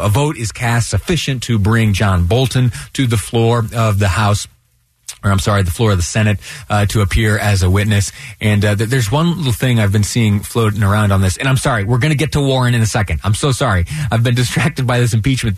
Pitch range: 105-130 Hz